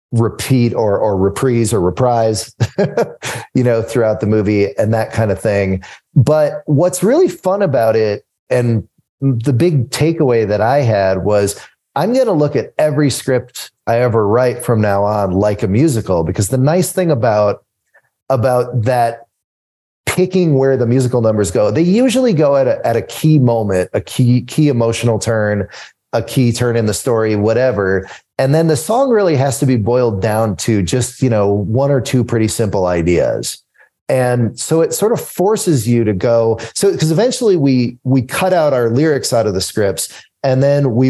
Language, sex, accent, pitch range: English, male, American, 110-140 Hz